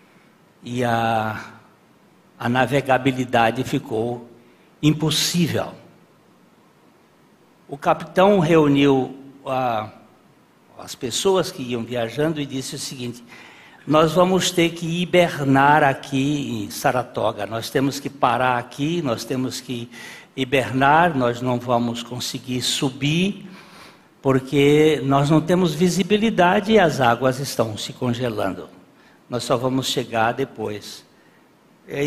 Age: 60-79